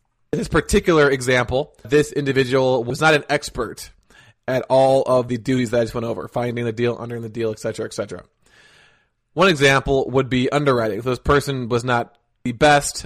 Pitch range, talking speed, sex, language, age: 125-140 Hz, 185 wpm, male, English, 20-39